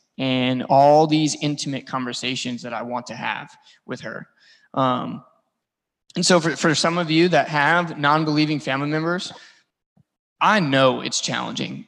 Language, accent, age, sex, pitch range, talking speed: English, American, 20-39, male, 135-175 Hz, 145 wpm